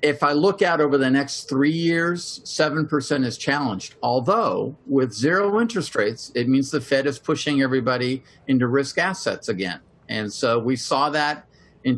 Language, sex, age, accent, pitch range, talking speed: English, male, 50-69, American, 125-150 Hz, 170 wpm